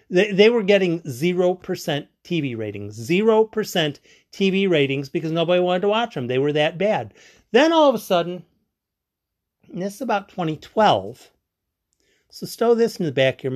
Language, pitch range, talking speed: English, 135-205 Hz, 170 wpm